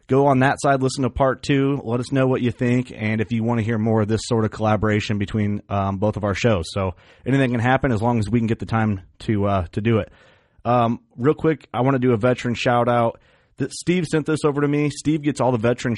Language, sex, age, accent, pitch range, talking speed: English, male, 30-49, American, 105-130 Hz, 265 wpm